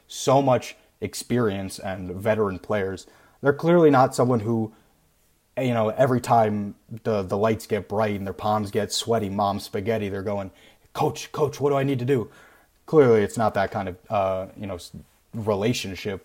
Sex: male